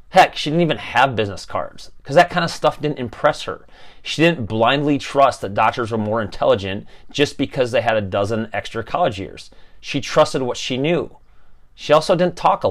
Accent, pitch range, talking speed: American, 110-145 Hz, 205 wpm